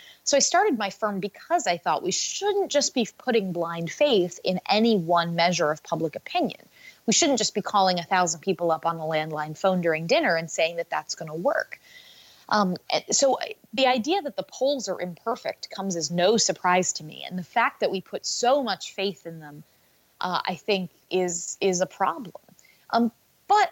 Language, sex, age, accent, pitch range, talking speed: English, female, 20-39, American, 180-245 Hz, 195 wpm